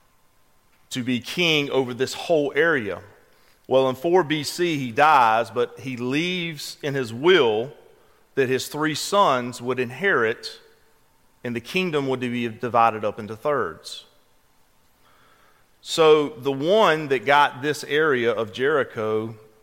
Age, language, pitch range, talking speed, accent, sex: 40-59, English, 125-180 Hz, 130 wpm, American, male